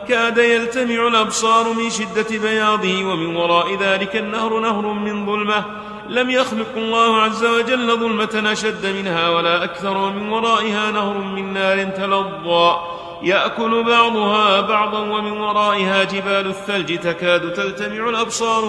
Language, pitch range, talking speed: Arabic, 195-225 Hz, 125 wpm